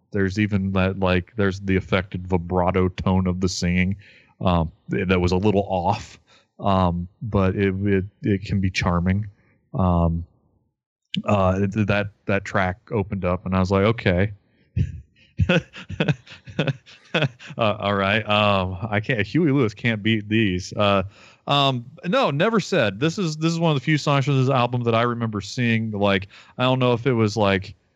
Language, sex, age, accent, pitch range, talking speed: English, male, 30-49, American, 90-110 Hz, 170 wpm